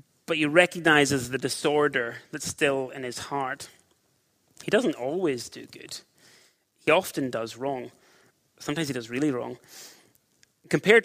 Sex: male